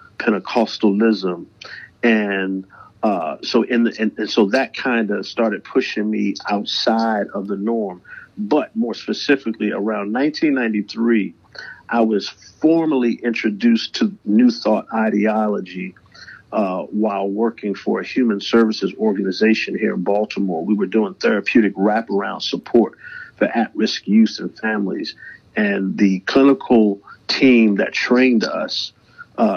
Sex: male